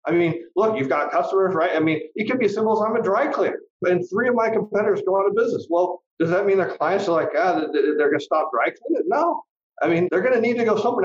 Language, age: English, 40-59